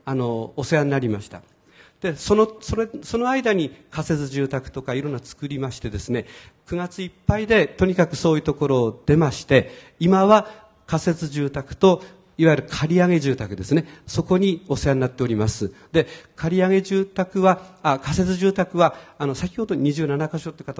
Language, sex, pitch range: Japanese, male, 130-180 Hz